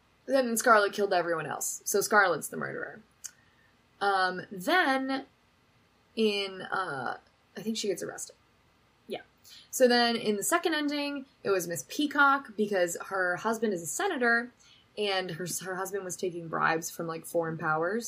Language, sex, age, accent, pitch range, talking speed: English, female, 10-29, American, 165-230 Hz, 155 wpm